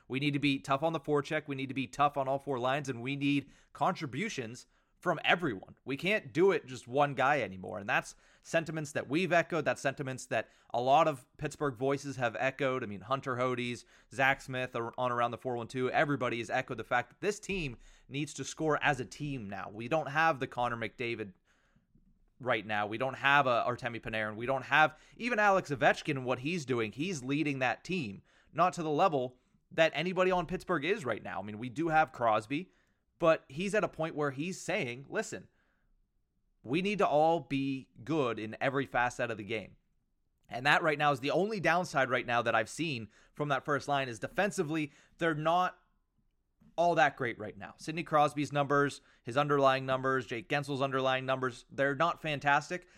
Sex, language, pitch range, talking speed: male, English, 125-155 Hz, 200 wpm